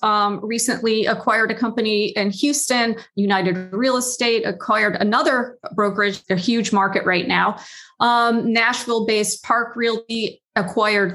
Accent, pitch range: American, 195-240 Hz